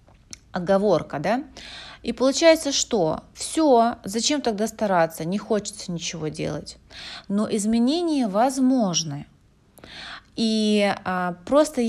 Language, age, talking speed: Russian, 30-49, 90 wpm